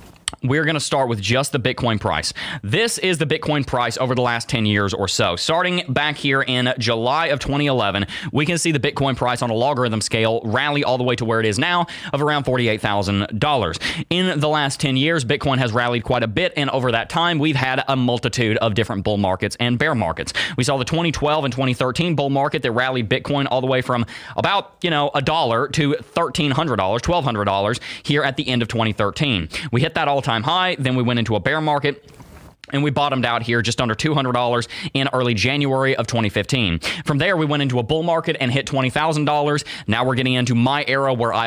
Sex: male